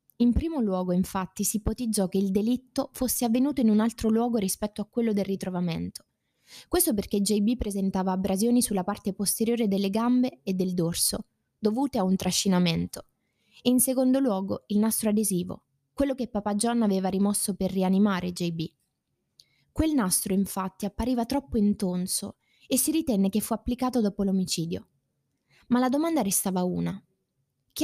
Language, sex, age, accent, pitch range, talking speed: Italian, female, 20-39, native, 185-235 Hz, 155 wpm